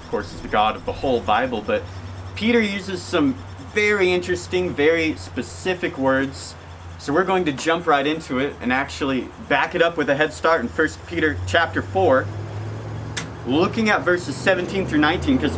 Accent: American